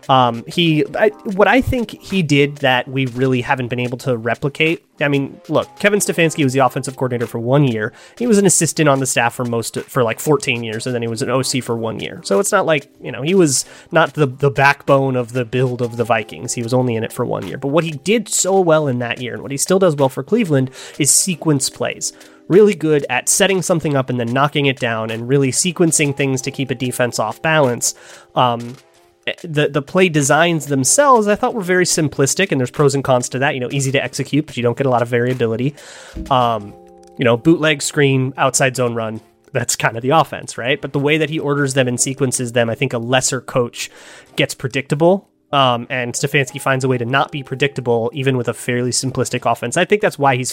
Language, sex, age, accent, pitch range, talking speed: English, male, 30-49, American, 125-155 Hz, 240 wpm